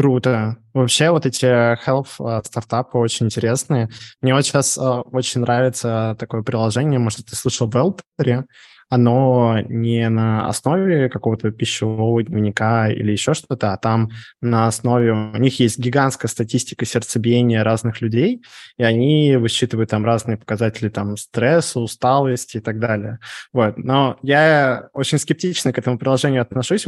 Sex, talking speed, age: male, 140 wpm, 20-39